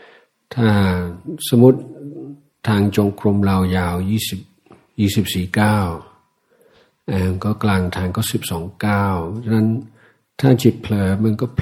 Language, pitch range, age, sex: Thai, 95-115 Hz, 60-79, male